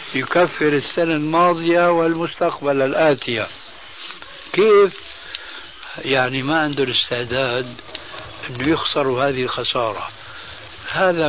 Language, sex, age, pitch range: Arabic, male, 60-79, 135-185 Hz